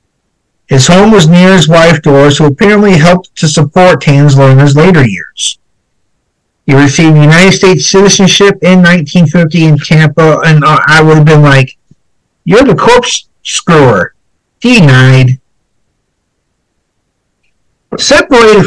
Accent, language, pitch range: American, English, 140-185 Hz